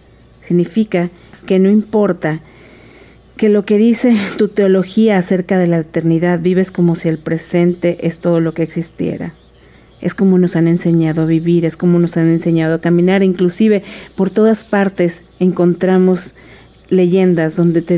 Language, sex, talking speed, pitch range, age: Spanish, female, 155 wpm, 170-190 Hz, 40-59